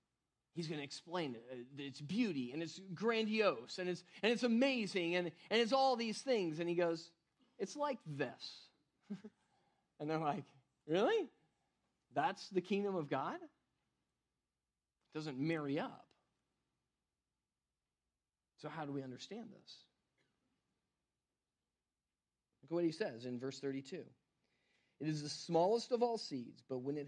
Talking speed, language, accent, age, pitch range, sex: 140 wpm, English, American, 40-59, 130-200 Hz, male